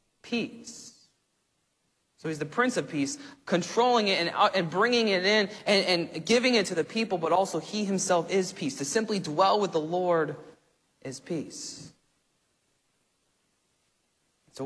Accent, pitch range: American, 155-195 Hz